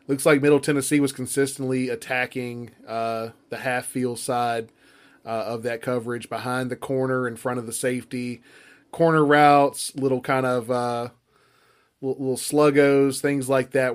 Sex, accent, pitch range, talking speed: male, American, 120-135 Hz, 150 wpm